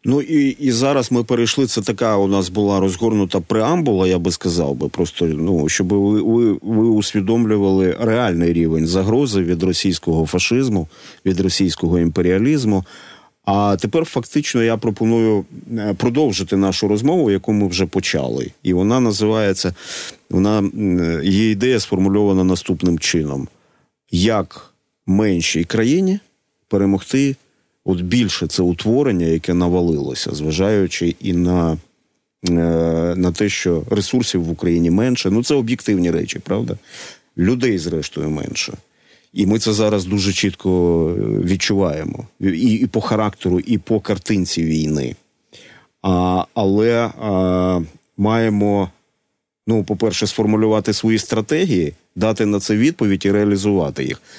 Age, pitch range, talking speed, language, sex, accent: 40-59, 90-110 Hz, 120 wpm, Ukrainian, male, native